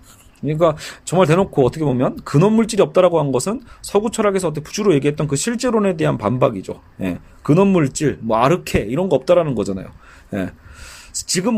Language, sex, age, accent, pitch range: Korean, male, 30-49, native, 130-195 Hz